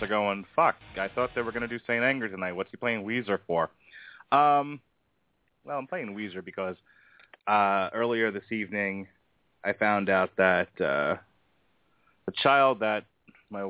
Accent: American